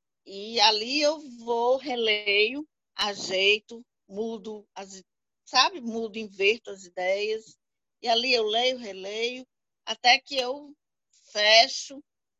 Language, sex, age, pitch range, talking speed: Portuguese, female, 40-59, 220-305 Hz, 105 wpm